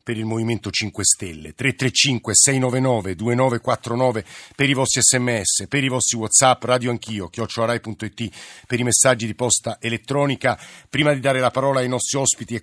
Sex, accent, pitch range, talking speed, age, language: male, native, 115-135 Hz, 160 wpm, 50-69, Italian